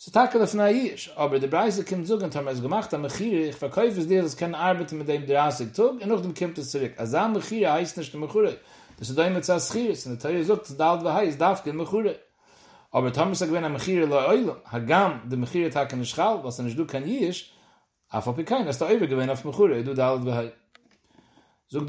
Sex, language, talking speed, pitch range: male, English, 95 wpm, 135-185 Hz